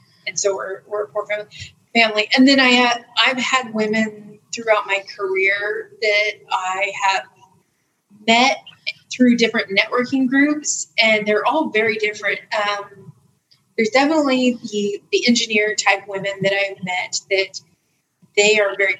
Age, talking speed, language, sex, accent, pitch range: 30-49, 145 wpm, English, female, American, 200-235 Hz